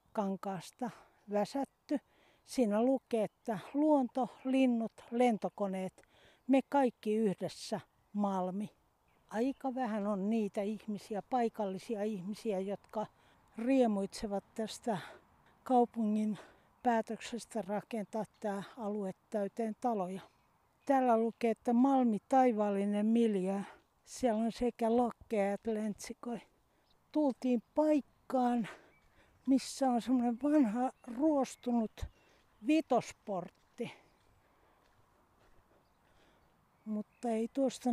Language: Finnish